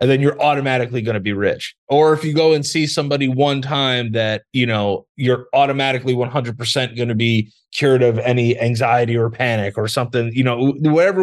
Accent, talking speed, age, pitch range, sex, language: American, 200 wpm, 20-39, 115-145 Hz, male, English